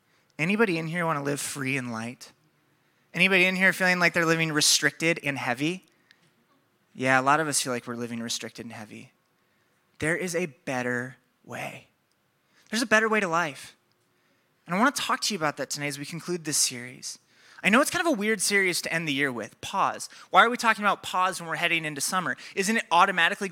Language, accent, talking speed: English, American, 215 wpm